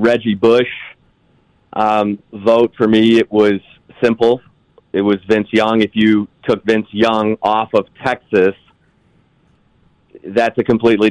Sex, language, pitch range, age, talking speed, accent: male, English, 100-115 Hz, 30-49, 130 wpm, American